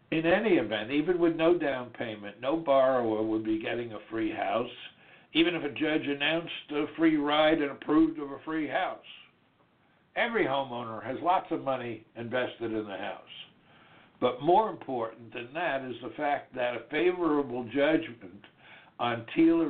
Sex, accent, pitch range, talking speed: male, American, 120-165 Hz, 165 wpm